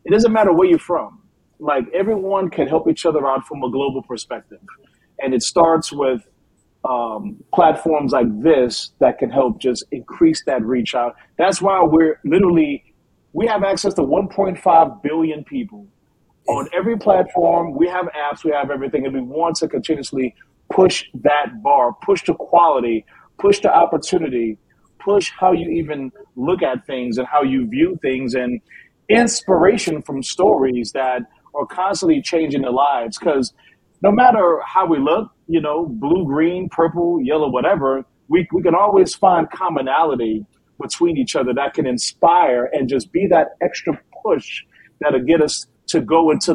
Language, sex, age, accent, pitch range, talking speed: English, male, 40-59, American, 135-195 Hz, 160 wpm